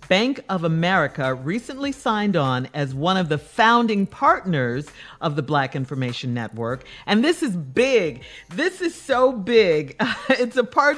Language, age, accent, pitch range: English, 50-69, American, 155-230 Hz